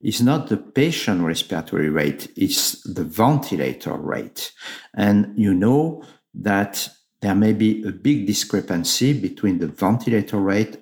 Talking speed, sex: 135 wpm, male